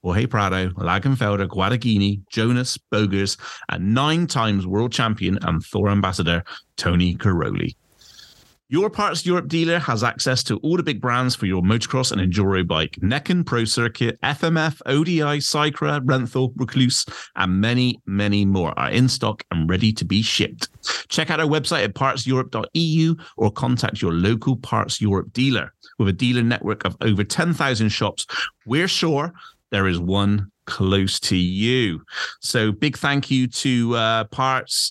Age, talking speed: 30-49, 150 wpm